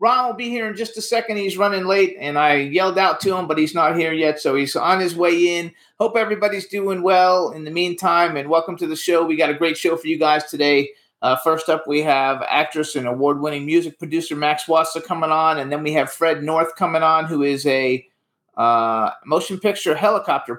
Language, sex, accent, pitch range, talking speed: English, male, American, 135-170 Hz, 230 wpm